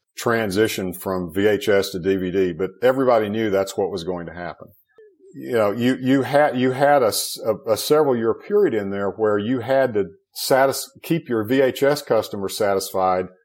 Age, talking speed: 50-69, 175 wpm